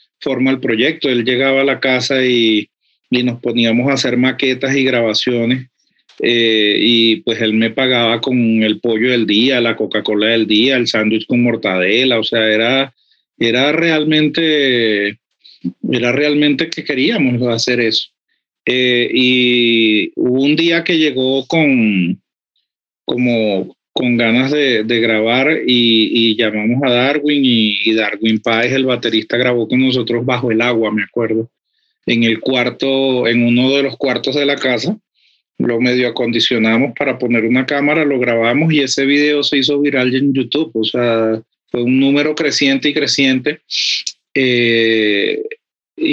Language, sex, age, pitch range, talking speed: Spanish, male, 40-59, 115-145 Hz, 150 wpm